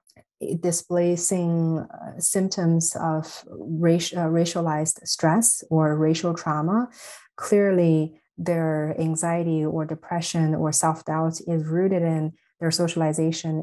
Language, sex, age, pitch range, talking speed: English, female, 30-49, 160-175 Hz, 90 wpm